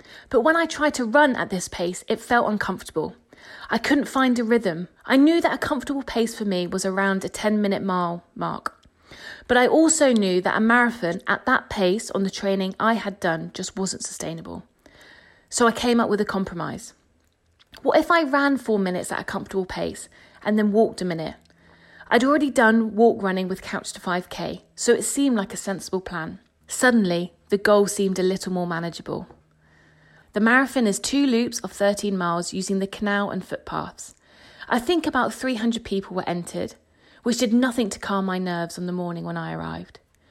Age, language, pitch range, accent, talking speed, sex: 30-49, English, 180-230 Hz, British, 190 wpm, female